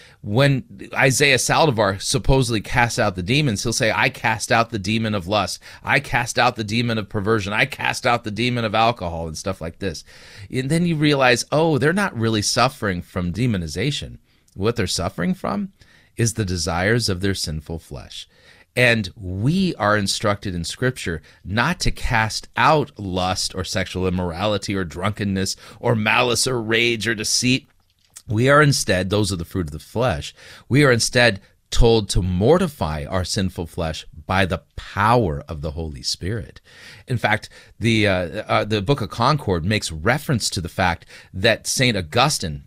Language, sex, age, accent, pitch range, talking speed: English, male, 30-49, American, 95-120 Hz, 170 wpm